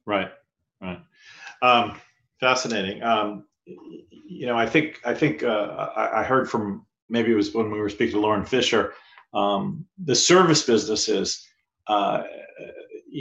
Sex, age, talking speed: male, 40-59, 140 wpm